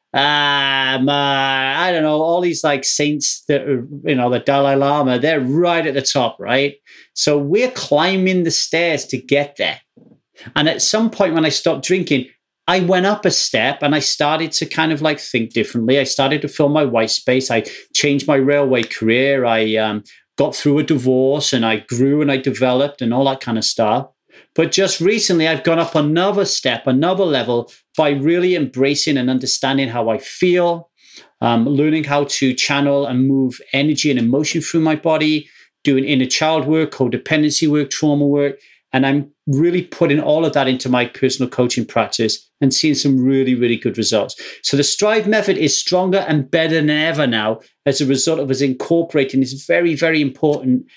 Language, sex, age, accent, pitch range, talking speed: English, male, 40-59, British, 125-155 Hz, 190 wpm